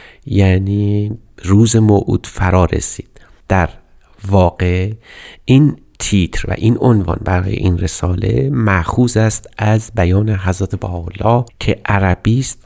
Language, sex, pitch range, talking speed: Persian, male, 95-115 Hz, 110 wpm